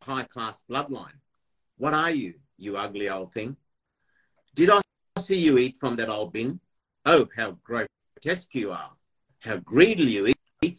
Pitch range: 105-140 Hz